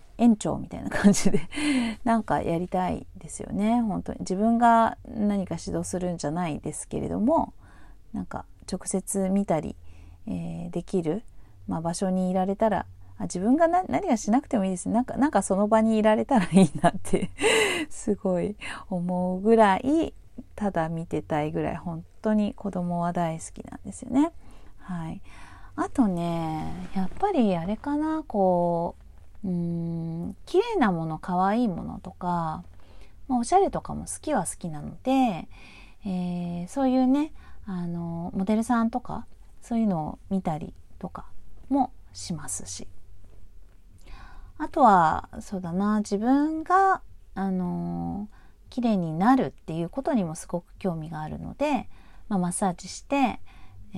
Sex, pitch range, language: female, 165-225 Hz, Japanese